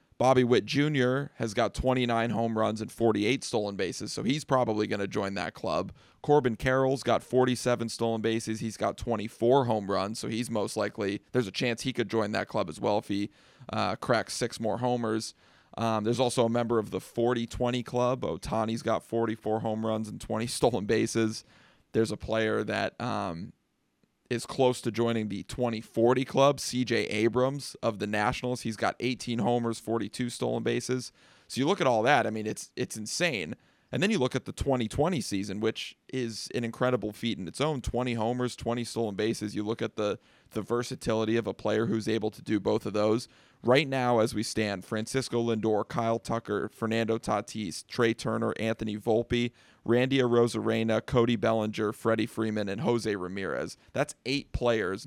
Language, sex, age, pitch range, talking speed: English, male, 30-49, 110-125 Hz, 185 wpm